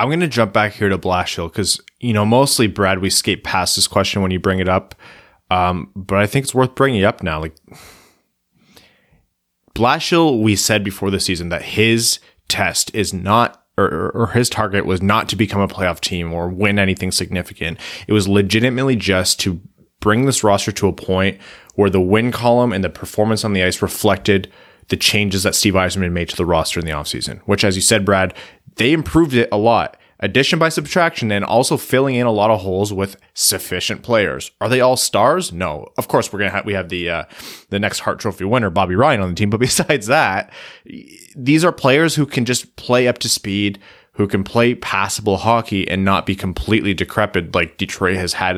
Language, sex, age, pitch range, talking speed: English, male, 20-39, 95-115 Hz, 210 wpm